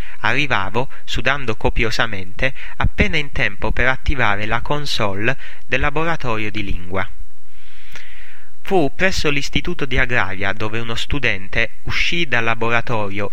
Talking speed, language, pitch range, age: 115 wpm, English, 105-135 Hz, 30-49